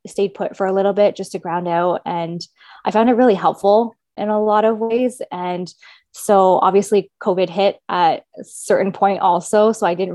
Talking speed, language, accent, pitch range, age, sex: 200 wpm, English, American, 175-210 Hz, 20-39, female